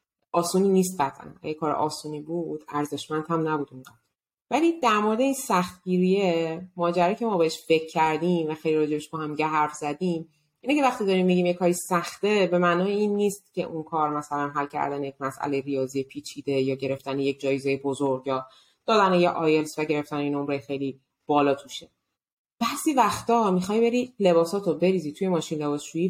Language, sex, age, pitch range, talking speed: Persian, female, 30-49, 155-205 Hz, 170 wpm